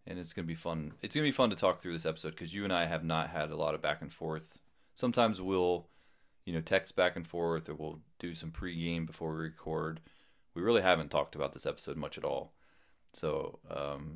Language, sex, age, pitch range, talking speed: English, male, 30-49, 80-90 Hz, 235 wpm